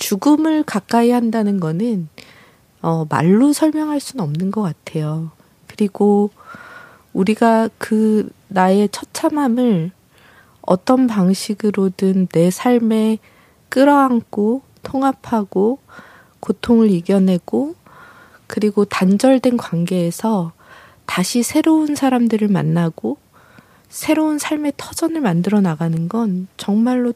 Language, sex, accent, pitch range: Korean, female, native, 180-250 Hz